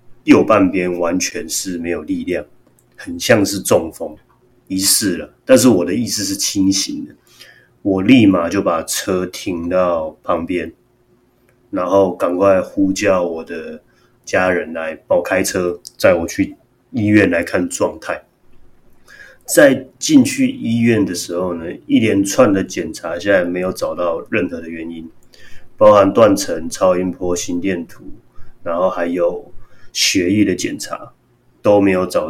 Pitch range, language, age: 85-110 Hz, Chinese, 30-49